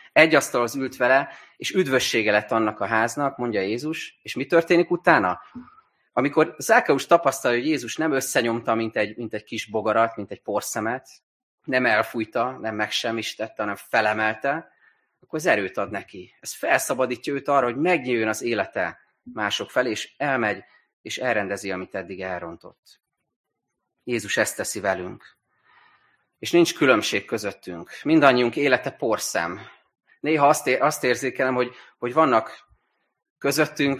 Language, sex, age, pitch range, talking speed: Hungarian, male, 30-49, 110-135 Hz, 145 wpm